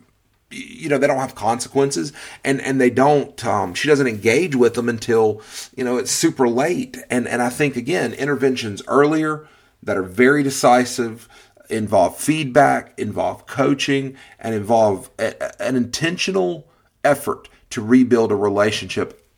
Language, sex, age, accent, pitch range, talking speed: English, male, 40-59, American, 110-140 Hz, 150 wpm